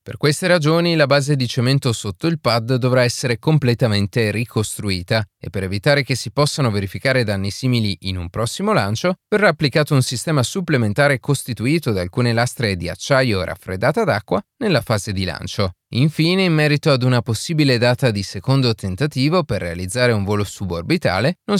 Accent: native